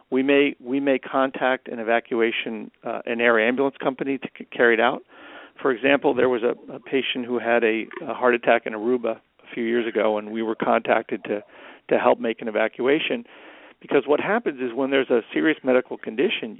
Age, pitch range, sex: 50-69, 115-135 Hz, male